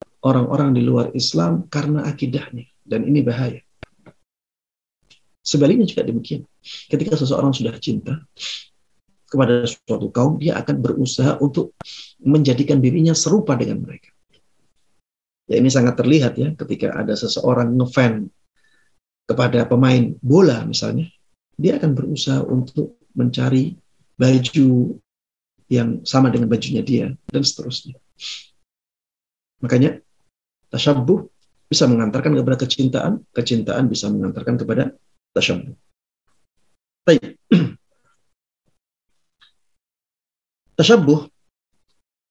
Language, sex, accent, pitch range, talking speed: Indonesian, male, native, 115-140 Hz, 95 wpm